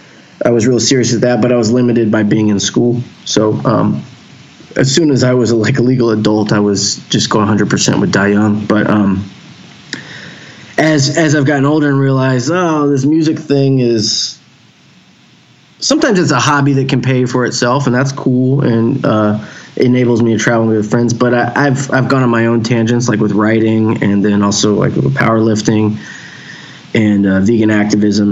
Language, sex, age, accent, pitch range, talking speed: English, male, 20-39, American, 105-130 Hz, 185 wpm